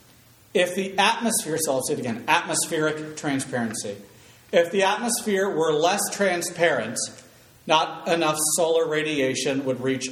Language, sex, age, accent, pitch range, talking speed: English, male, 40-59, American, 110-150 Hz, 130 wpm